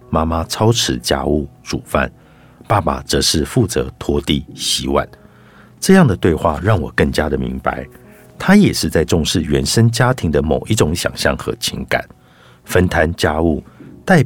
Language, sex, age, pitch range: Chinese, male, 50-69, 70-115 Hz